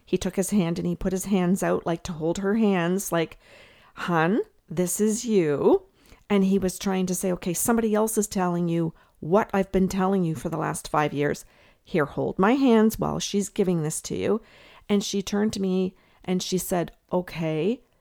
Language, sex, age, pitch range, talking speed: English, female, 50-69, 175-205 Hz, 205 wpm